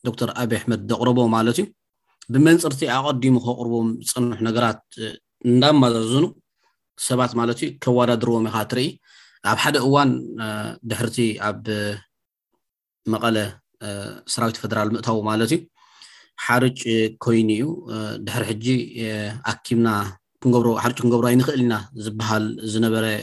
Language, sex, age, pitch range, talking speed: Amharic, male, 30-49, 110-125 Hz, 100 wpm